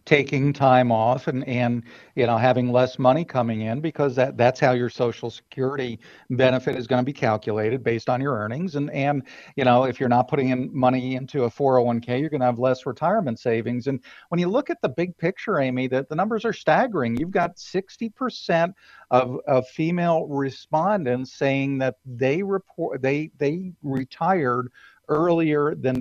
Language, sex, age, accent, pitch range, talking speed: English, male, 50-69, American, 125-160 Hz, 180 wpm